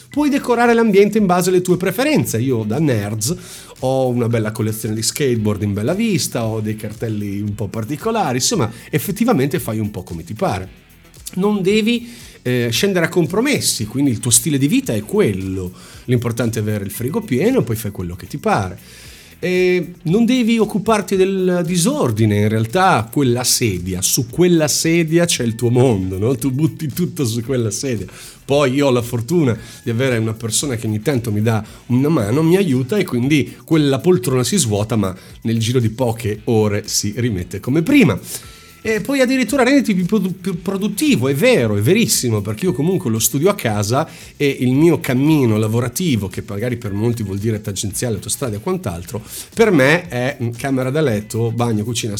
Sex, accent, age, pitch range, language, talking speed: male, native, 40-59, 110-175 Hz, Italian, 180 wpm